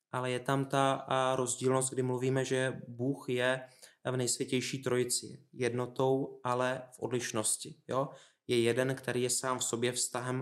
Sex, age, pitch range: male, 20-39, 120-130 Hz